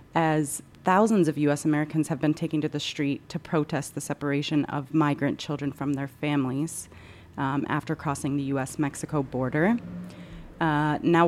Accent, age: American, 30-49